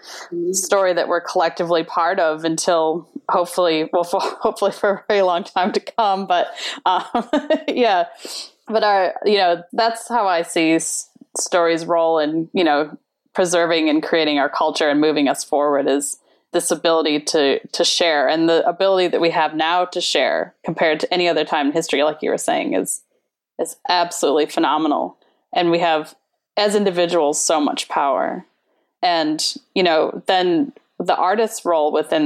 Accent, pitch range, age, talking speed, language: American, 165-210 Hz, 20-39, 165 wpm, English